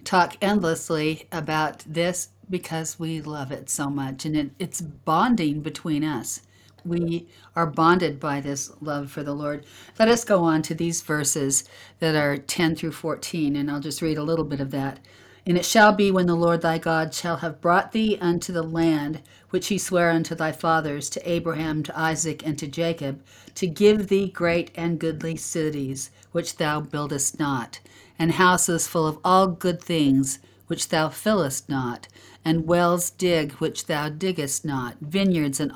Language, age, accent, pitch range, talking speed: English, 50-69, American, 140-170 Hz, 175 wpm